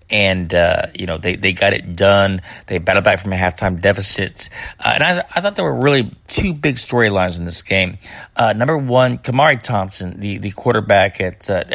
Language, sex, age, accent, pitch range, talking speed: English, male, 30-49, American, 100-130 Hz, 205 wpm